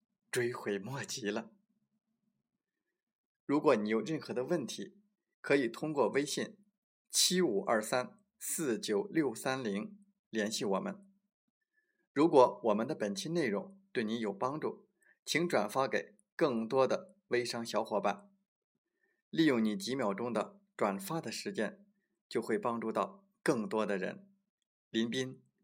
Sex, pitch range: male, 125-205 Hz